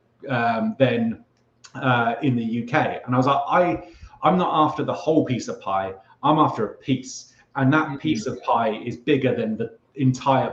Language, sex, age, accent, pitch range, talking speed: English, male, 30-49, British, 115-140 Hz, 190 wpm